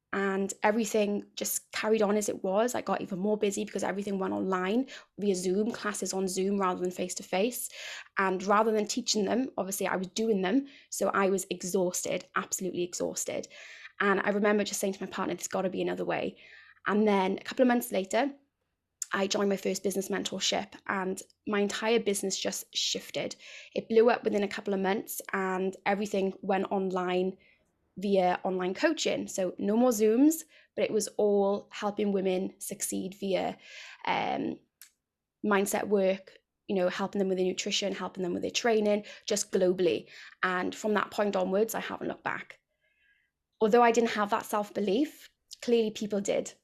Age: 20-39